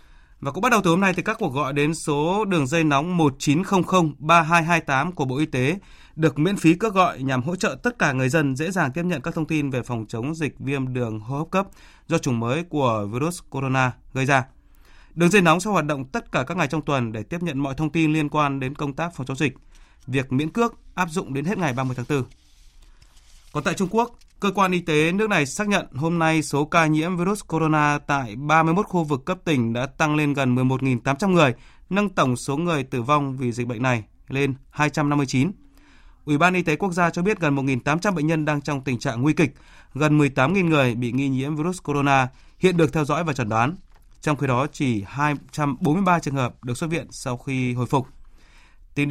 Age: 20-39